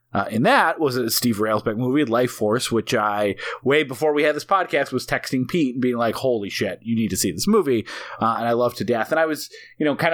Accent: American